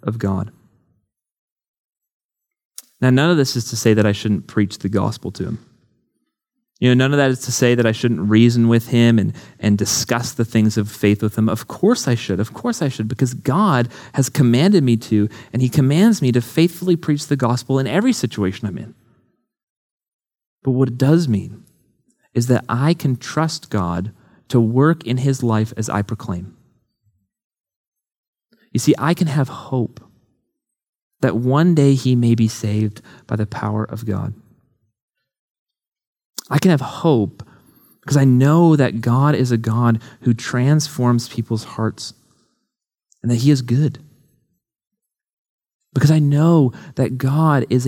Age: 30-49